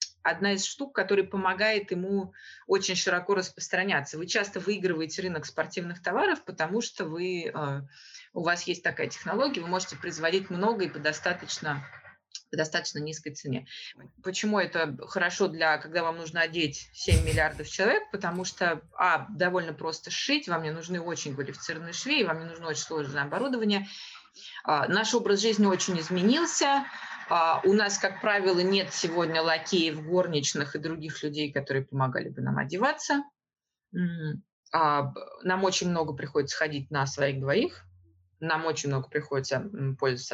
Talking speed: 145 wpm